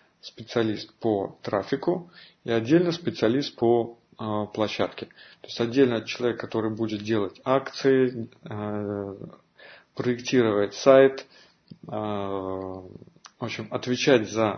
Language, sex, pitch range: Russian, male, 110-130 Hz